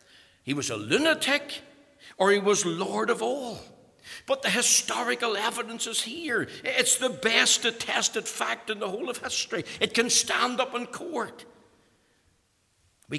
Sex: male